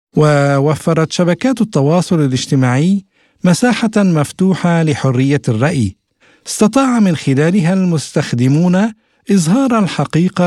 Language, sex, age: Arabic, male, 50-69